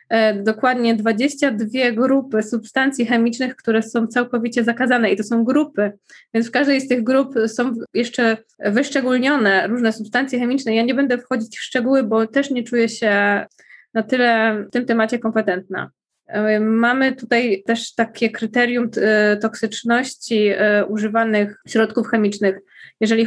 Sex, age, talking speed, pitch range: female, 20-39, 135 wpm, 210-245 Hz